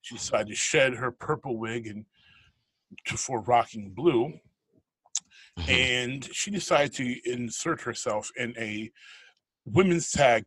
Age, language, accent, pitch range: 30-49, English, American, 110-135 Hz